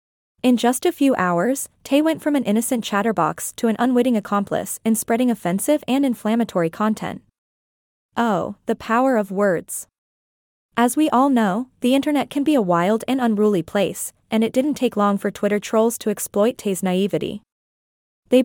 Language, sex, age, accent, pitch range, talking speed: English, female, 20-39, American, 200-250 Hz, 170 wpm